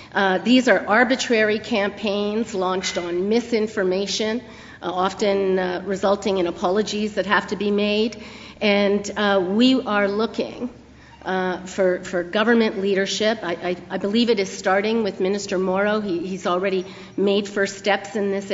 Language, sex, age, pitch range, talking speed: English, female, 40-59, 195-230 Hz, 145 wpm